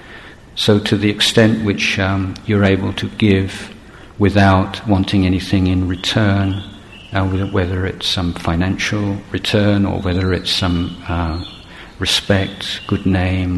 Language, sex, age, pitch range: Thai, male, 50-69, 90-105 Hz